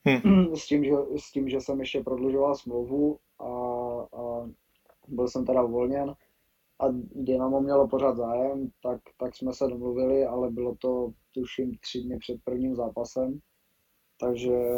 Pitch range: 120-130 Hz